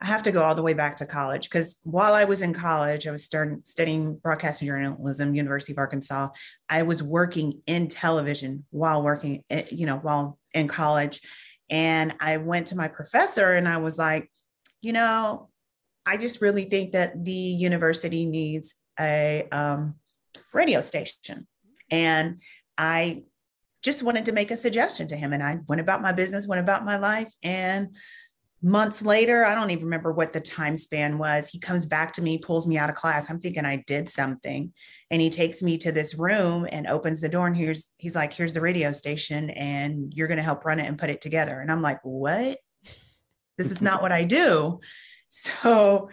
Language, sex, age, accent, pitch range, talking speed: English, female, 30-49, American, 150-180 Hz, 195 wpm